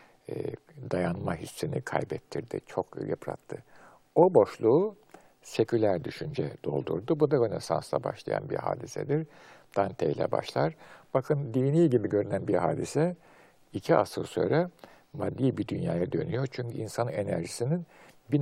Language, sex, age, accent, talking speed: Turkish, male, 60-79, native, 115 wpm